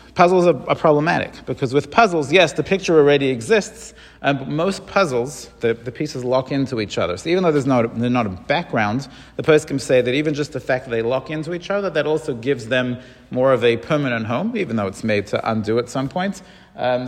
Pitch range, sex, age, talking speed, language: 120-155 Hz, male, 40-59, 225 wpm, English